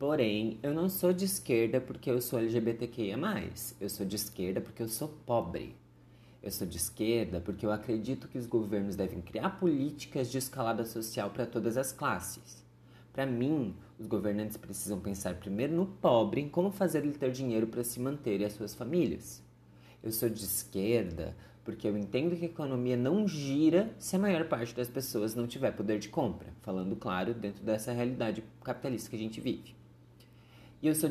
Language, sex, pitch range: Portuguese, male, 105-135 Hz